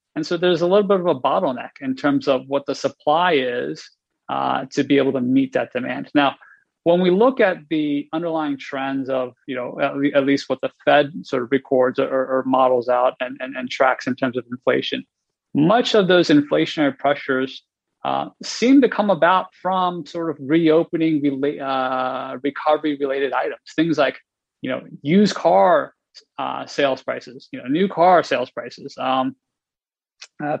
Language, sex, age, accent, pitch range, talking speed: English, male, 30-49, American, 135-180 Hz, 175 wpm